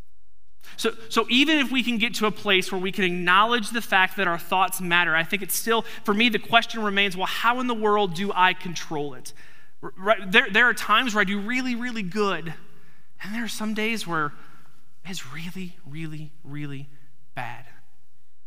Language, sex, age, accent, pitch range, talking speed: English, male, 30-49, American, 140-225 Hz, 190 wpm